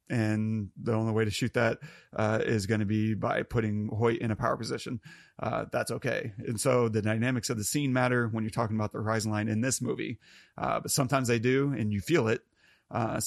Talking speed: 225 wpm